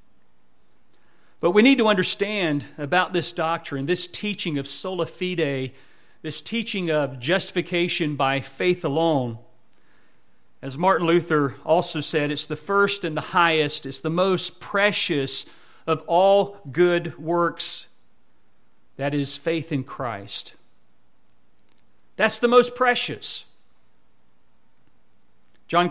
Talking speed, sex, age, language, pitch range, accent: 115 wpm, male, 40-59, English, 135-195 Hz, American